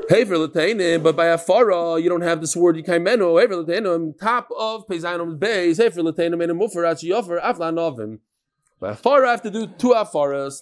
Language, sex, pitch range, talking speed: English, male, 160-220 Hz, 210 wpm